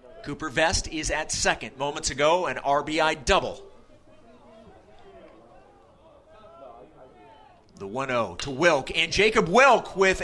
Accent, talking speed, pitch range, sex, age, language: American, 105 wpm, 140-190 Hz, male, 40-59, English